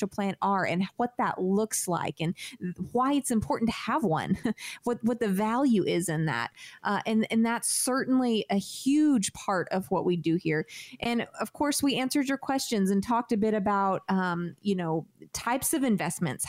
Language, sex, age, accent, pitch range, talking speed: English, female, 30-49, American, 190-255 Hz, 190 wpm